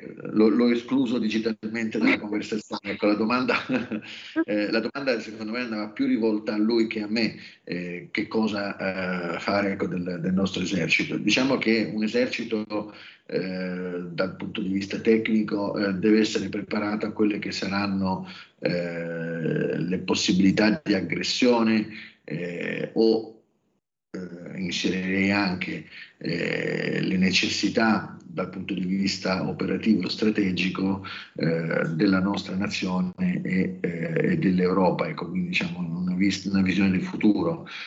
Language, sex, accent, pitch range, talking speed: Italian, male, native, 95-110 Hz, 135 wpm